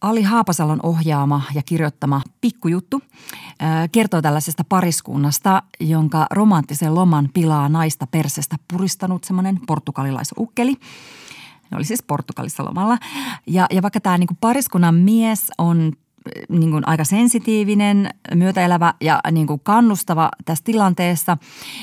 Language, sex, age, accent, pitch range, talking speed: Finnish, female, 30-49, native, 155-210 Hz, 100 wpm